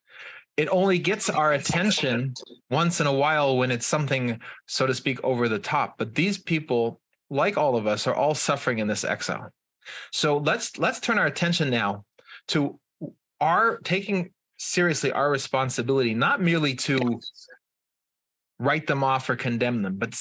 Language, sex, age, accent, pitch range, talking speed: English, male, 30-49, American, 120-160 Hz, 160 wpm